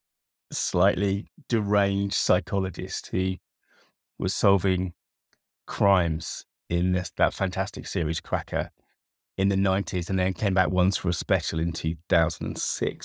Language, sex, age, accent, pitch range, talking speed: English, male, 30-49, British, 90-110 Hz, 115 wpm